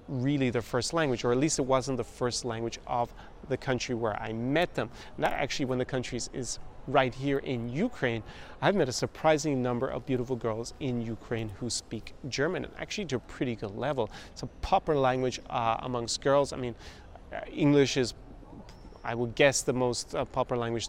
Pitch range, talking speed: 110-130 Hz, 200 wpm